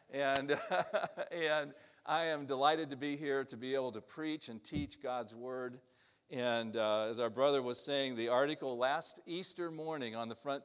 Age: 50-69